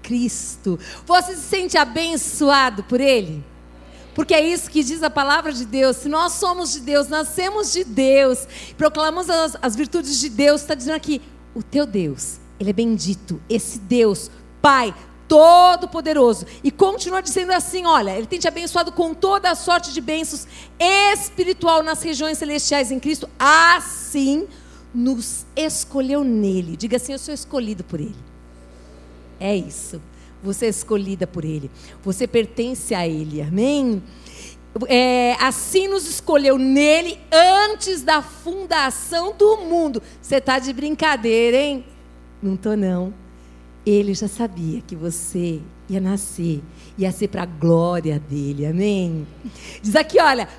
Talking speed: 145 wpm